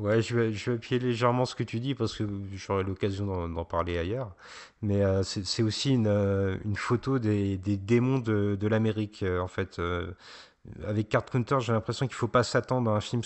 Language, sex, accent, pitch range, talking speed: French, male, French, 95-120 Hz, 225 wpm